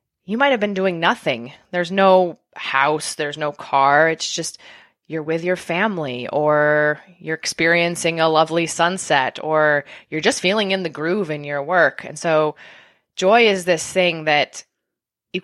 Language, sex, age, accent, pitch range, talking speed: English, female, 20-39, American, 150-185 Hz, 165 wpm